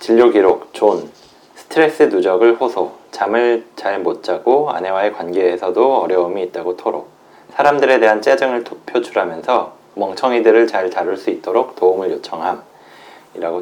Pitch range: 105-135 Hz